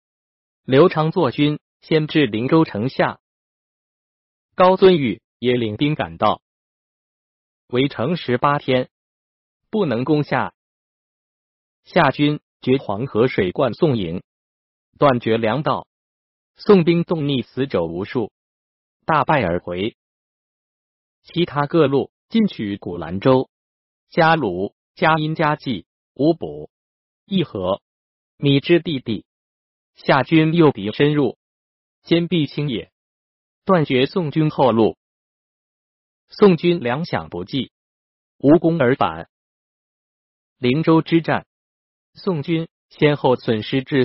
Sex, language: male, Chinese